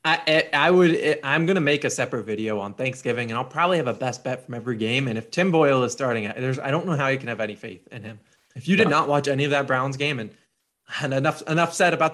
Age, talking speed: 20-39, 275 wpm